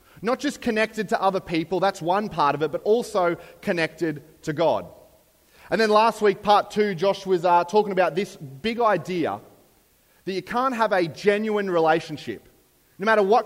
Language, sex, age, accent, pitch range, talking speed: English, male, 30-49, Australian, 155-200 Hz, 180 wpm